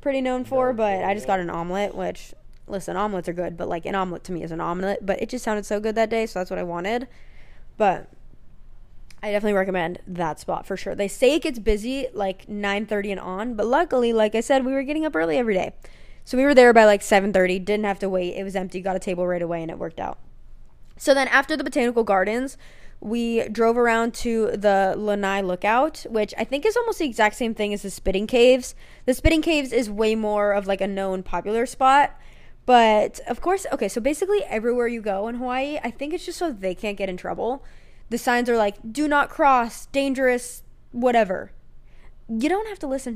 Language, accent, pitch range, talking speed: English, American, 195-255 Hz, 225 wpm